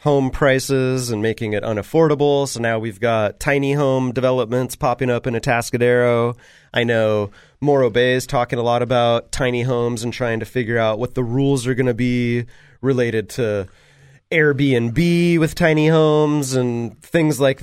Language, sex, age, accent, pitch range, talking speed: English, male, 30-49, American, 115-140 Hz, 165 wpm